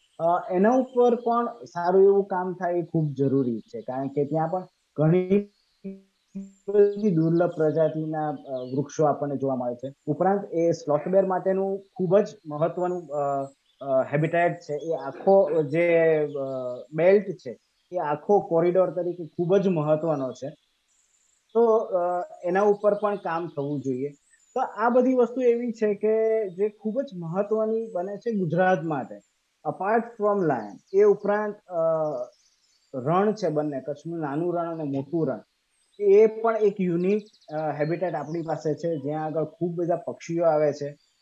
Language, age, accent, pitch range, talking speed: Gujarati, 20-39, native, 150-200 Hz, 65 wpm